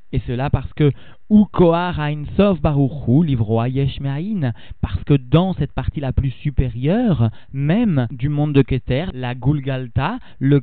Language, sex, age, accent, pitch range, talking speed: French, male, 40-59, French, 125-155 Hz, 145 wpm